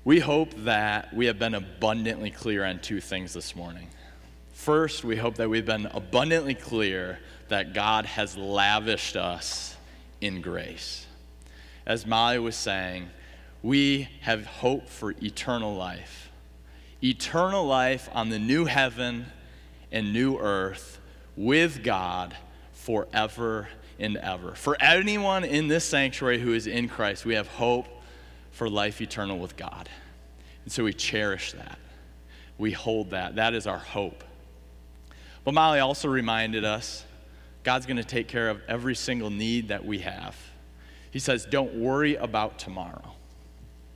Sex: male